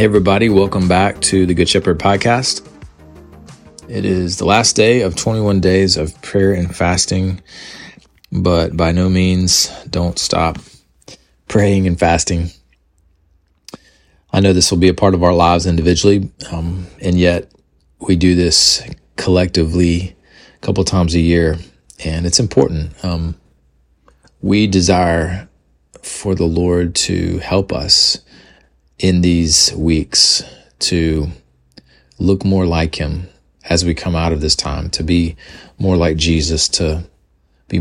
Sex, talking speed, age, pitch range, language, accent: male, 140 wpm, 30-49, 80-95 Hz, English, American